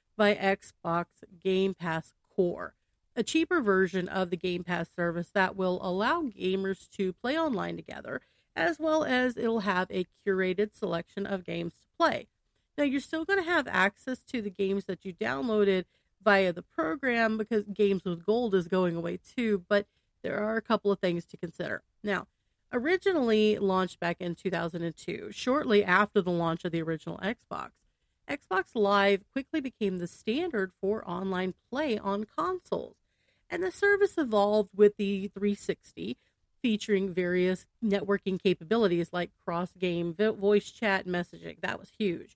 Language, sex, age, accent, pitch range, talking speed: English, female, 40-59, American, 185-250 Hz, 155 wpm